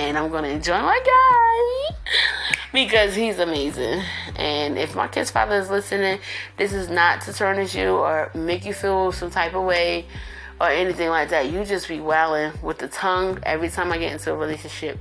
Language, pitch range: English, 150-185 Hz